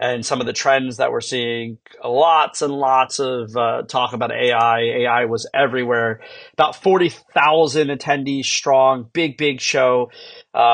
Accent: American